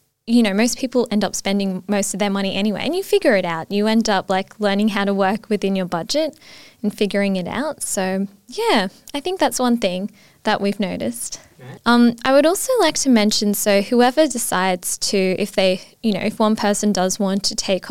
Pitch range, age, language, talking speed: 195-235 Hz, 10-29, English, 215 wpm